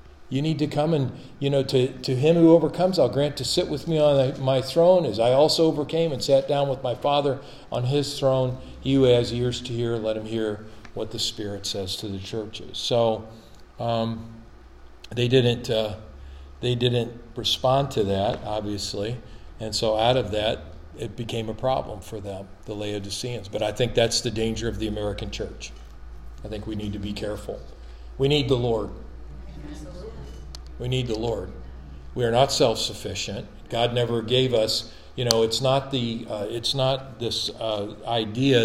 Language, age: English, 50-69